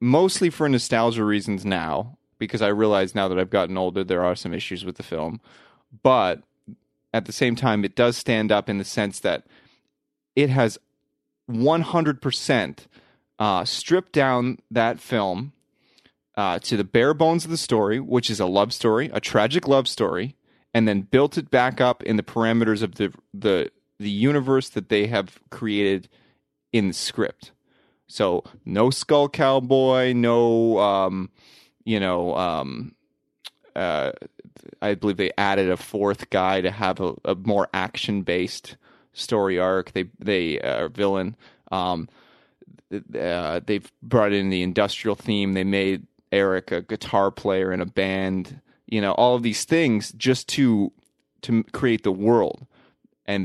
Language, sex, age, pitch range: English, male, 30-49, 95-125 Hz